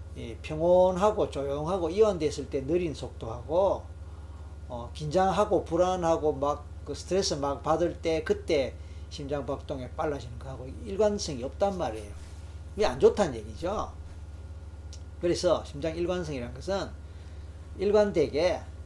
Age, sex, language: 40-59, male, Korean